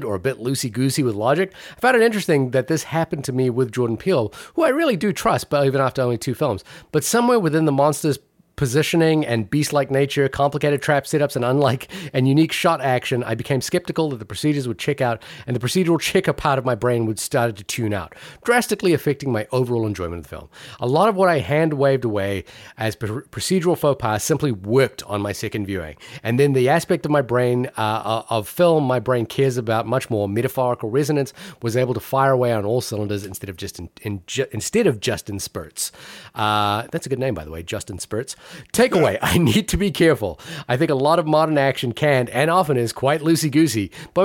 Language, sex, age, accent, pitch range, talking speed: English, male, 30-49, American, 110-155 Hz, 220 wpm